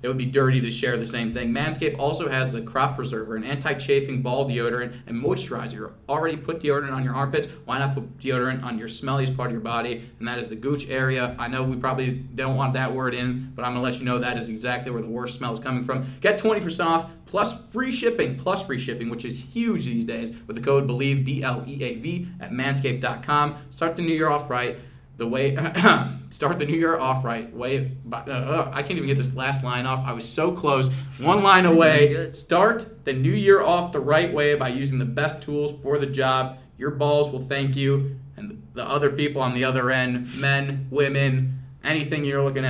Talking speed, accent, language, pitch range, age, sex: 230 wpm, American, English, 125-145 Hz, 20-39, male